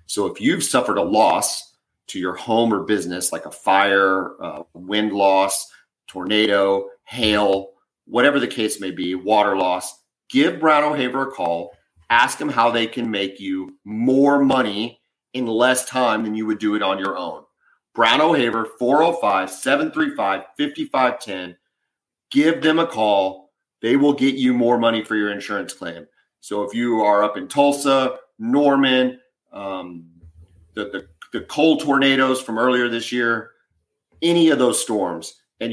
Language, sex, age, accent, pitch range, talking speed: English, male, 40-59, American, 100-135 Hz, 155 wpm